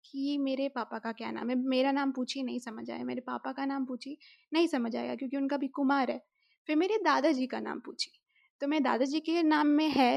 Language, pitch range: Hindi, 230-290 Hz